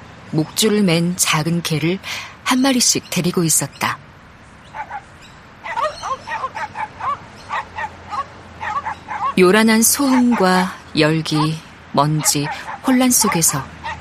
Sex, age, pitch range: female, 40-59, 140-210 Hz